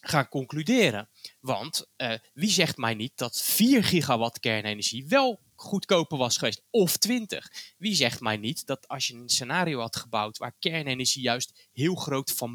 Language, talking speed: Dutch, 165 wpm